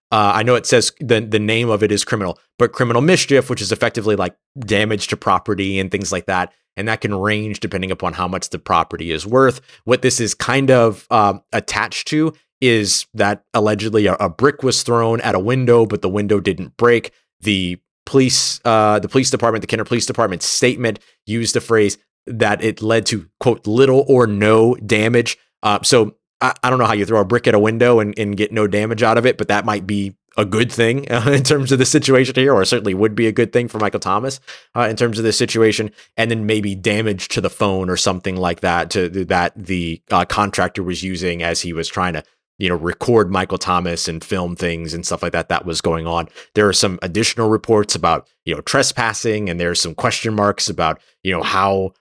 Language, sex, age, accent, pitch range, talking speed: English, male, 30-49, American, 95-120 Hz, 225 wpm